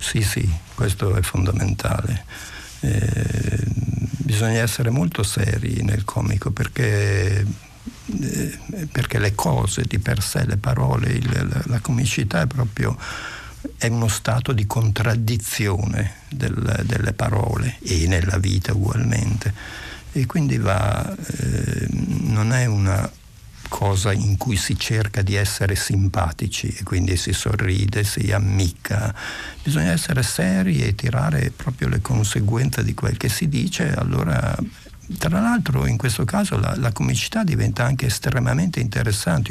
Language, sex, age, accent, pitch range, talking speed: Italian, male, 60-79, native, 100-125 Hz, 130 wpm